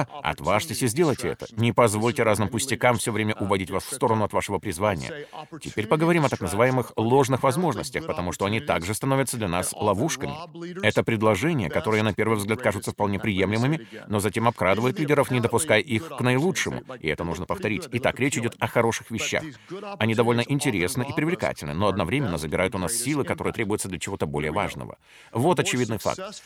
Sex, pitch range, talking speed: male, 105-145 Hz, 180 wpm